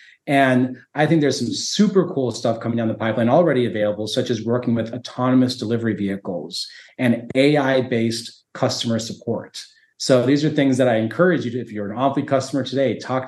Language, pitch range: English, 115-145 Hz